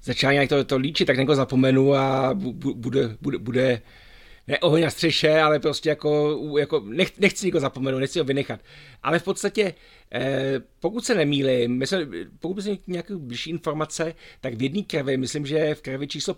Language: Czech